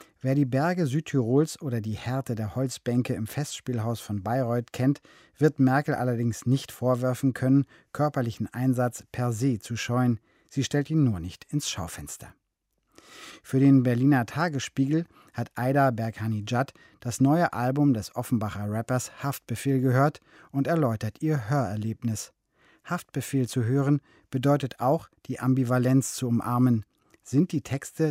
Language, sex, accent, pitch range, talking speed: German, male, German, 120-140 Hz, 135 wpm